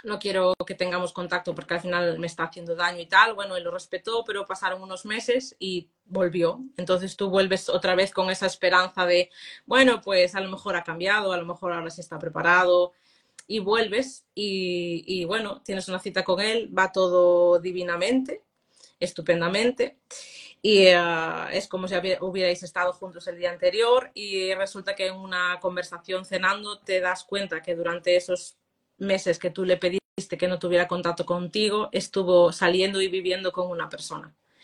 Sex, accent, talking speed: female, Spanish, 175 wpm